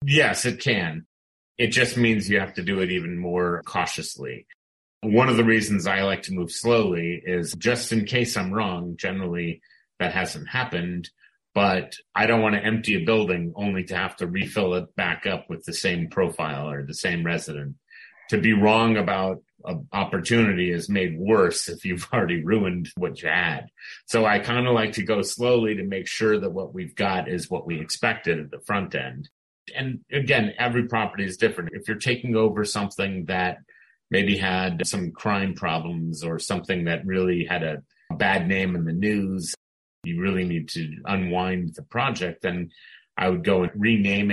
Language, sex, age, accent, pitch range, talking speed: English, male, 30-49, American, 90-110 Hz, 185 wpm